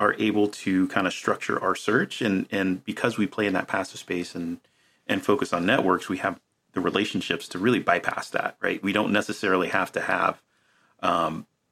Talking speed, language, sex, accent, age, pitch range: 195 wpm, English, male, American, 30-49, 90-115 Hz